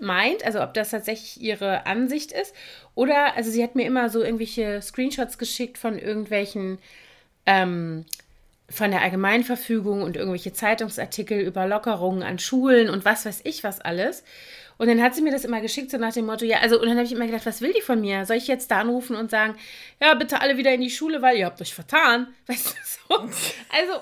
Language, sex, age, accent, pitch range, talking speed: German, female, 30-49, German, 205-255 Hz, 210 wpm